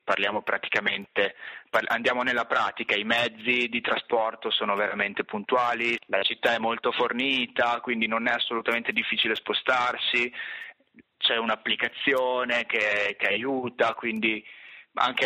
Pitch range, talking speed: 105-125 Hz, 120 wpm